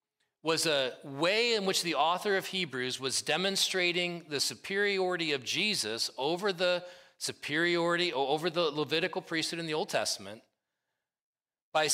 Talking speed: 135 wpm